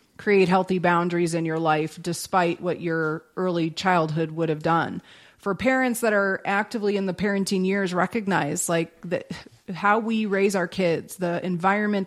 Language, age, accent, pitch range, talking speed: English, 30-49, American, 175-210 Hz, 160 wpm